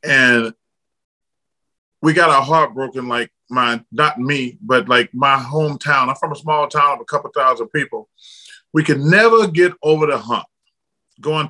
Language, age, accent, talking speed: English, 30-49, American, 160 wpm